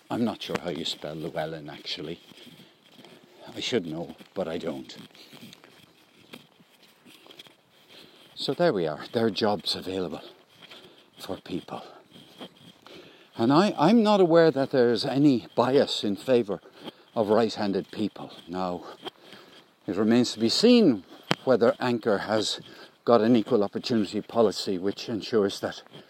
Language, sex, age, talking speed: English, male, 60-79, 125 wpm